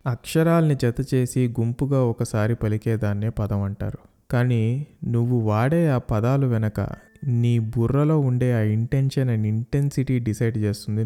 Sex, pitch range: male, 110-140 Hz